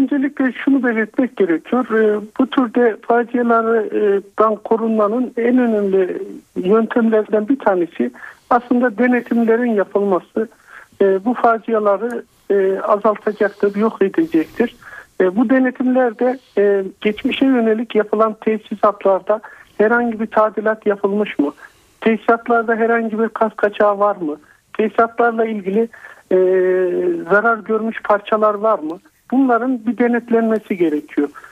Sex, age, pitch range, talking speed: male, 50-69, 210-240 Hz, 95 wpm